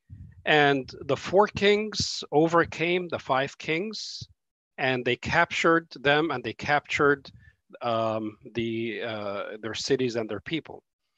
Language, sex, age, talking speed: English, male, 40-59, 125 wpm